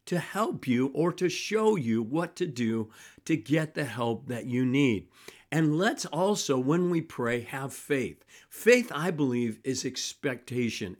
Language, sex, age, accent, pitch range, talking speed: English, male, 50-69, American, 130-165 Hz, 165 wpm